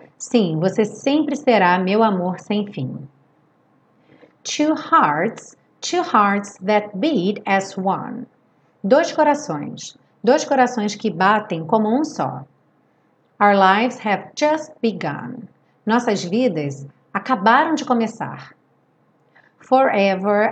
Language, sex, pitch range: Portuguese, female, 185-250 Hz